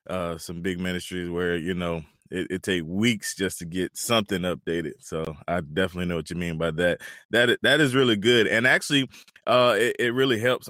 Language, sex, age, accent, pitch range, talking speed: English, male, 20-39, American, 90-110 Hz, 210 wpm